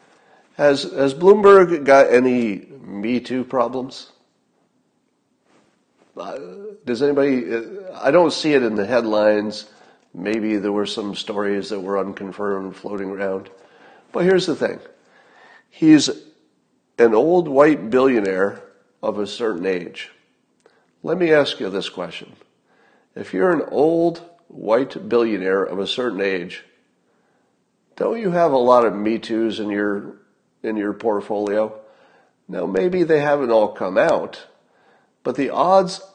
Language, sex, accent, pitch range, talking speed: English, male, American, 100-140 Hz, 130 wpm